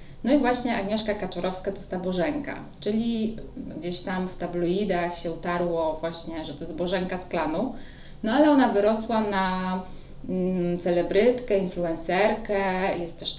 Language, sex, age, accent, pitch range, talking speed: Polish, female, 20-39, native, 170-195 Hz, 145 wpm